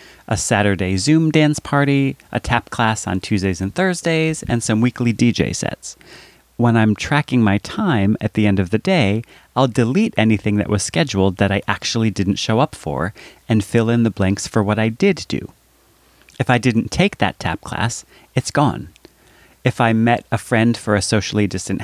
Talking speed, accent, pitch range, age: 190 wpm, American, 105-135 Hz, 30-49